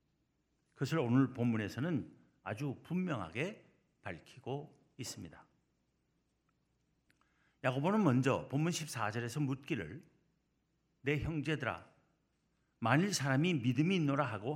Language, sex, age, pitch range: Korean, male, 50-69, 120-160 Hz